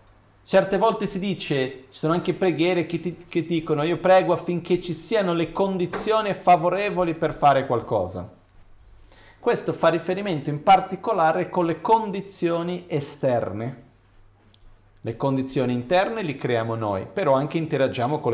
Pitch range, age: 115-170 Hz, 40-59